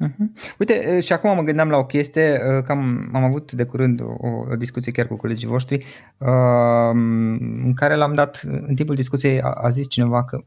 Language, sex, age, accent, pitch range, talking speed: Romanian, male, 20-39, native, 115-145 Hz, 195 wpm